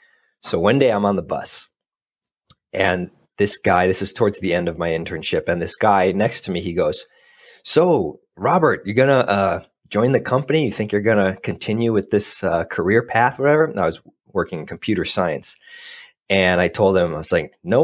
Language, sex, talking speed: English, male, 210 wpm